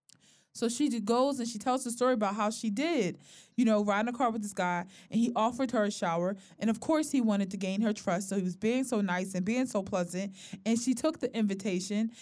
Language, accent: English, American